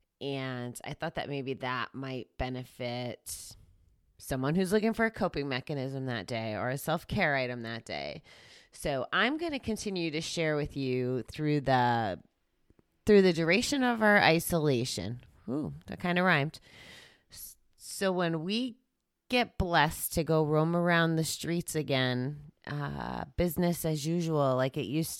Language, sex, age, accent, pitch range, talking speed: English, female, 30-49, American, 130-170 Hz, 150 wpm